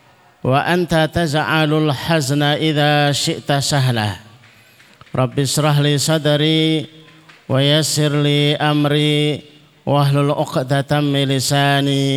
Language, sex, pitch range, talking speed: Indonesian, male, 115-150 Hz, 90 wpm